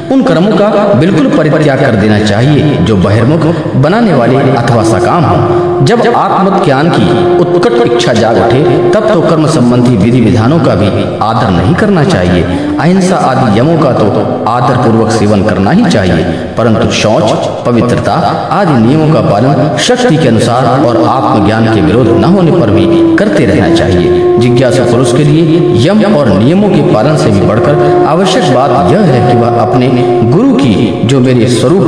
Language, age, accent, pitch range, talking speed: Hindi, 40-59, native, 120-170 Hz, 175 wpm